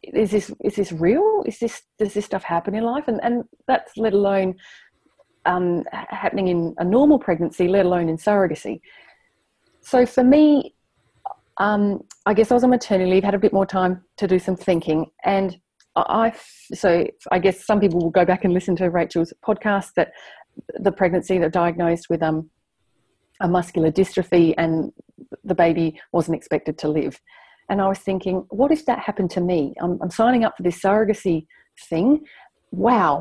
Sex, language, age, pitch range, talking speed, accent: female, English, 30-49, 175-220 Hz, 180 wpm, Australian